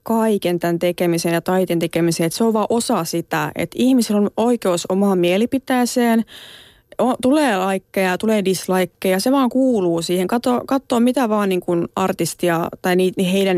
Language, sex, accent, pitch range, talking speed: Finnish, female, native, 175-225 Hz, 160 wpm